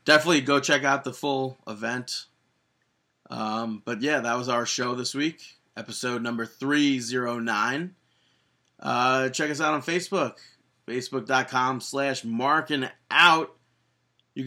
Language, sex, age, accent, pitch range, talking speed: English, male, 30-49, American, 125-150 Hz, 120 wpm